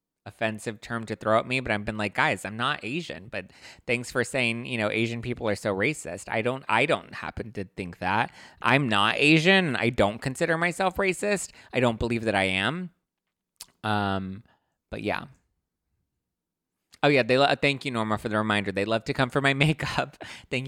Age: 20-39